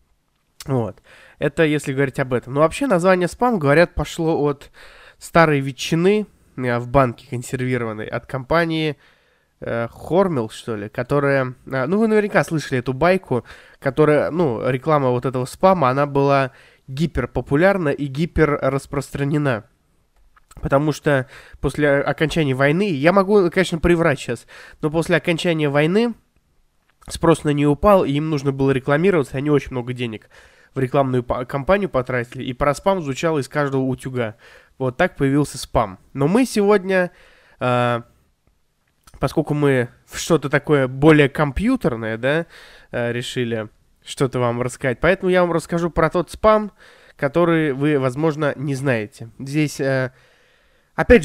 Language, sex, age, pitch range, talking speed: Russian, male, 20-39, 130-170 Hz, 130 wpm